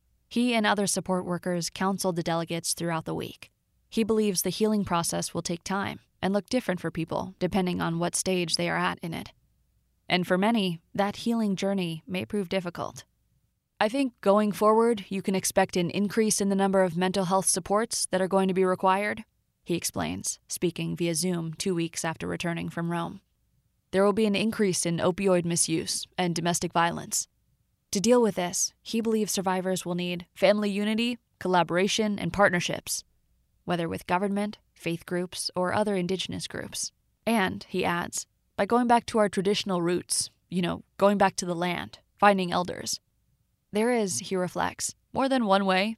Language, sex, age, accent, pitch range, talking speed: English, female, 20-39, American, 175-205 Hz, 175 wpm